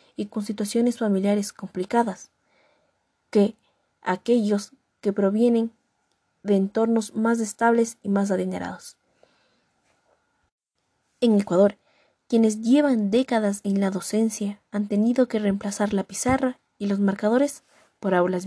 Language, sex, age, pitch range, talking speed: Spanish, female, 20-39, 200-240 Hz, 115 wpm